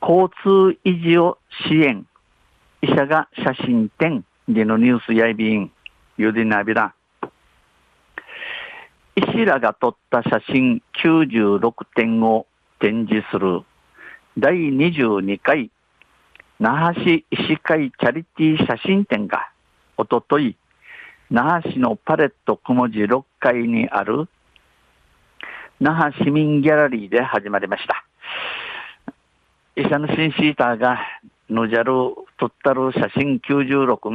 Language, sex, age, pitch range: Japanese, male, 50-69, 115-150 Hz